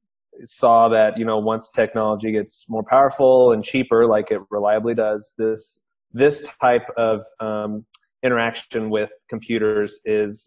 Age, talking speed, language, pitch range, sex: 20-39, 140 wpm, English, 110-120 Hz, male